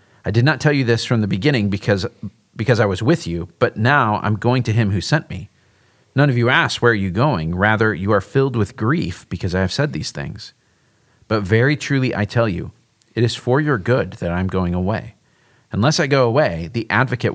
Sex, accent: male, American